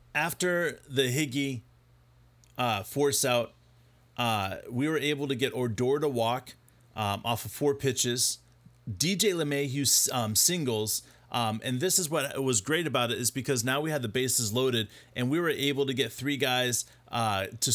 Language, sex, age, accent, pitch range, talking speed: English, male, 30-49, American, 115-145 Hz, 170 wpm